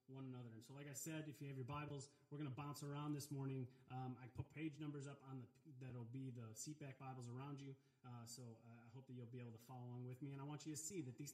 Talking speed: 295 wpm